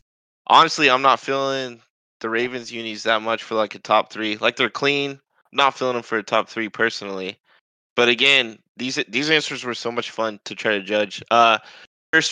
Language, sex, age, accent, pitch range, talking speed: English, male, 20-39, American, 110-140 Hz, 200 wpm